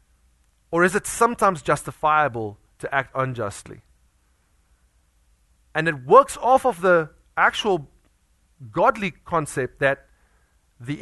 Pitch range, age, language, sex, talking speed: 120-185 Hz, 30-49, English, male, 105 wpm